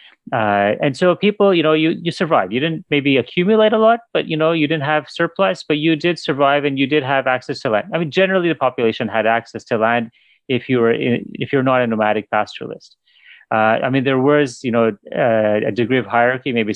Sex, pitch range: male, 120-160 Hz